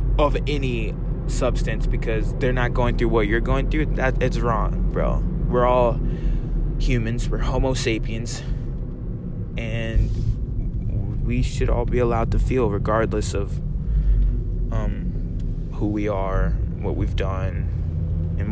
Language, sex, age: English, male, 20-39